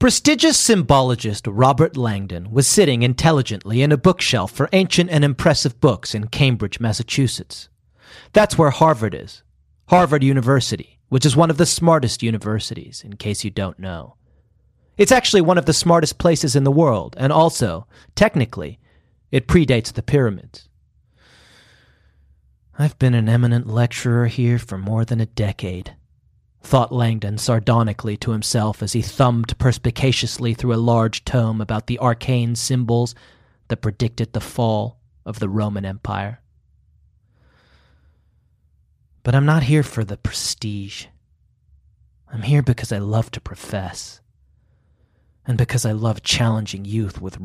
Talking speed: 140 wpm